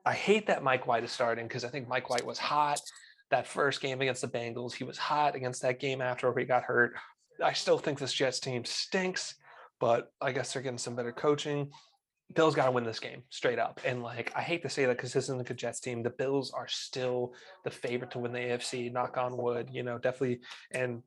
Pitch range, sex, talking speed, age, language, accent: 120-140 Hz, male, 235 wpm, 30-49, English, American